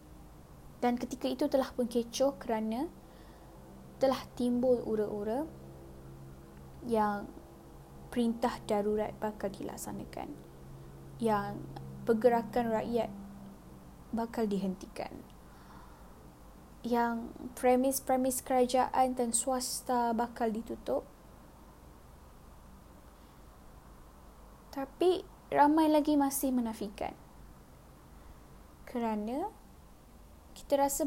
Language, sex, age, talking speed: Malay, female, 10-29, 65 wpm